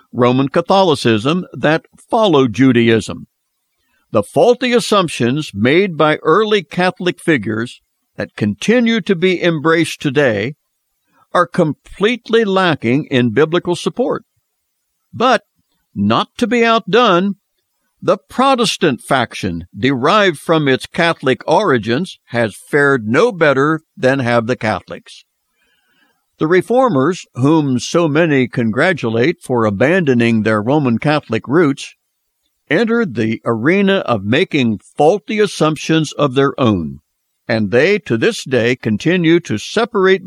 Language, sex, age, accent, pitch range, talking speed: English, male, 60-79, American, 120-180 Hz, 115 wpm